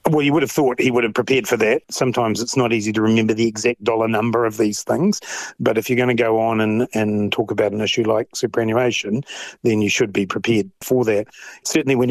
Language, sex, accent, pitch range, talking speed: English, male, Australian, 105-125 Hz, 240 wpm